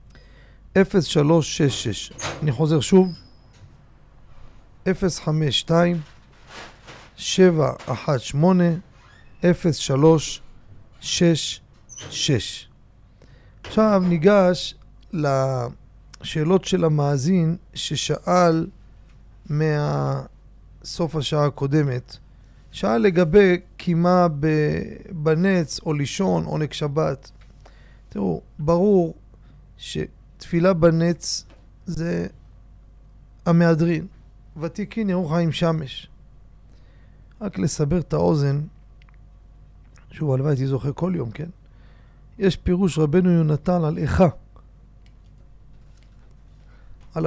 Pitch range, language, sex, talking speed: 125-170 Hz, Hebrew, male, 60 wpm